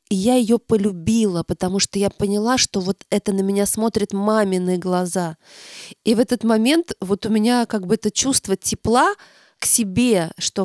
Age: 20-39